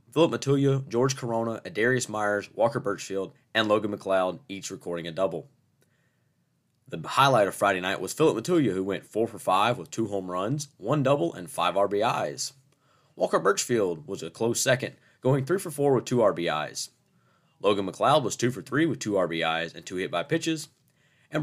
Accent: American